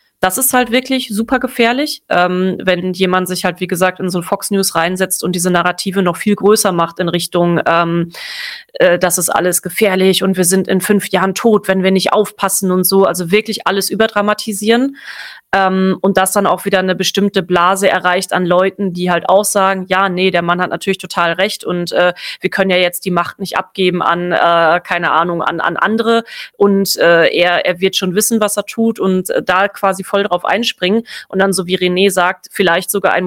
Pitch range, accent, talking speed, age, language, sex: 180-200 Hz, German, 215 wpm, 30-49, German, female